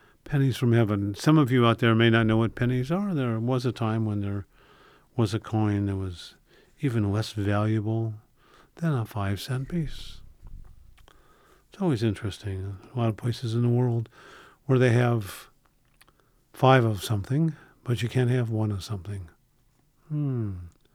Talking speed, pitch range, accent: 160 wpm, 100-130 Hz, American